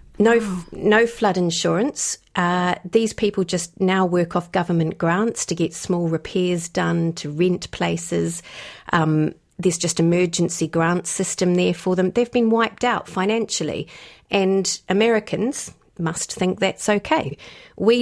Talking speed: 140 wpm